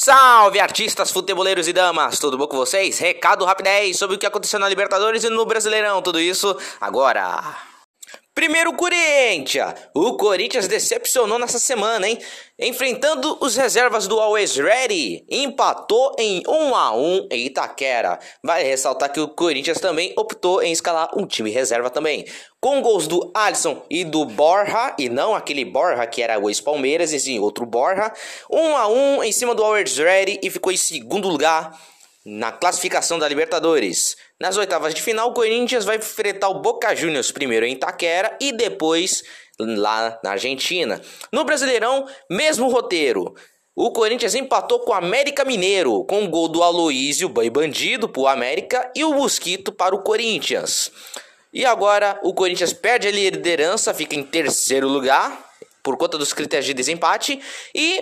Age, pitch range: 20-39, 165-260 Hz